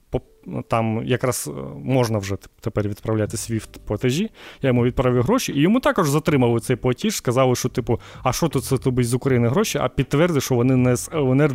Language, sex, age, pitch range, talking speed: Ukrainian, male, 20-39, 115-145 Hz, 185 wpm